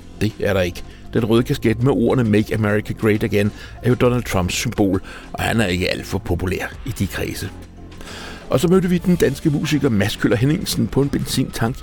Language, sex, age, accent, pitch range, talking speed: Danish, male, 60-79, native, 90-125 Hz, 210 wpm